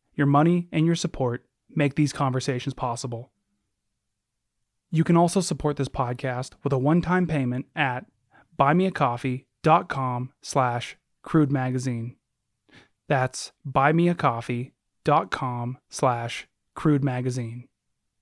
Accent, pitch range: American, 120-155 Hz